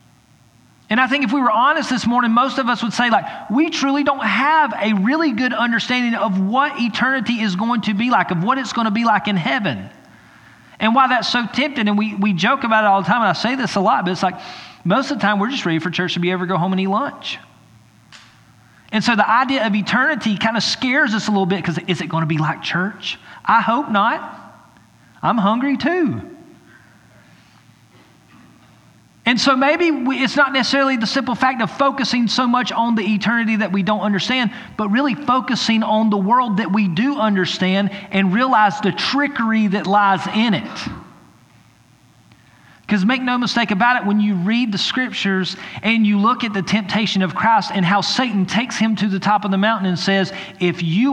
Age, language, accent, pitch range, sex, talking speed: 40-59, English, American, 195-245 Hz, male, 210 wpm